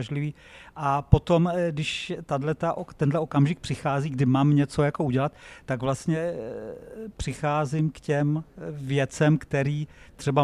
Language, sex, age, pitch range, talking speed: Czech, male, 50-69, 135-155 Hz, 105 wpm